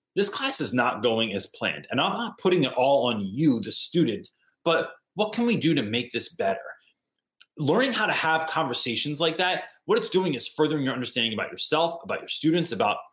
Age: 20-39